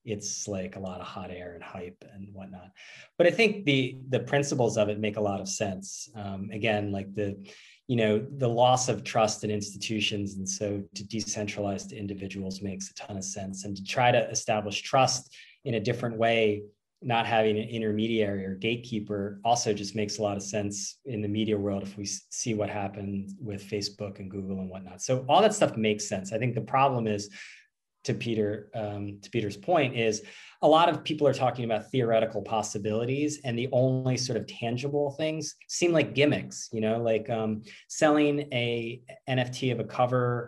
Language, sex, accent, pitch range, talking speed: English, male, American, 100-125 Hz, 195 wpm